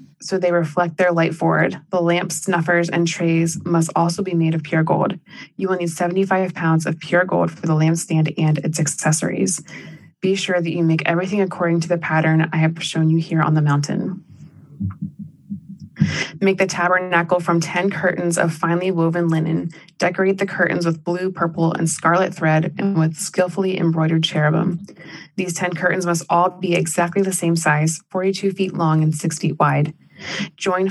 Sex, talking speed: female, 180 wpm